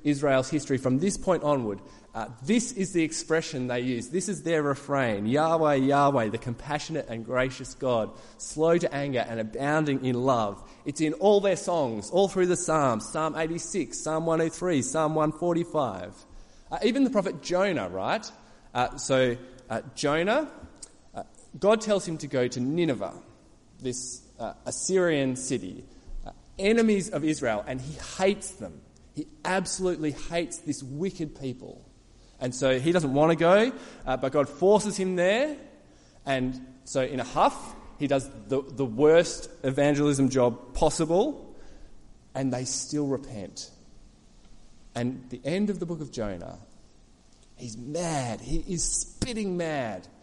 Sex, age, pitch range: male, 20-39, 130-180 Hz